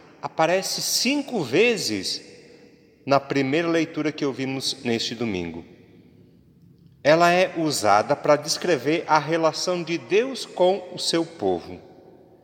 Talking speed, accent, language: 110 wpm, Brazilian, Portuguese